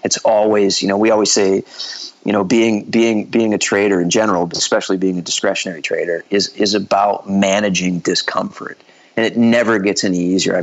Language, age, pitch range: English, 40-59, 95-110 Hz